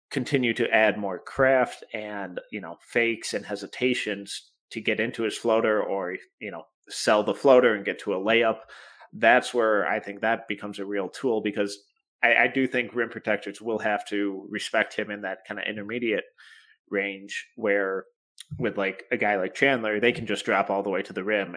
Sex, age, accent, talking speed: male, 30-49, American, 200 wpm